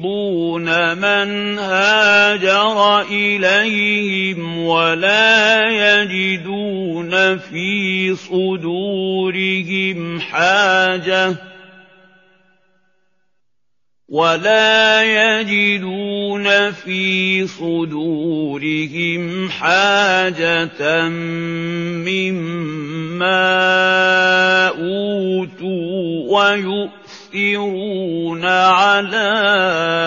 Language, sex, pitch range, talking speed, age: Indonesian, male, 170-205 Hz, 30 wpm, 50-69